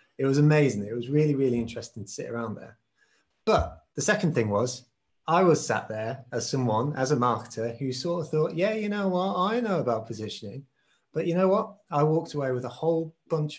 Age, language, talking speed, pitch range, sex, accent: 30-49, English, 215 wpm, 115-145 Hz, male, British